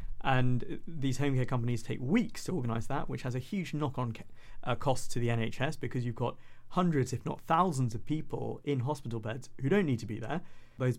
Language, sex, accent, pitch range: English, male, British, 115-140 Hz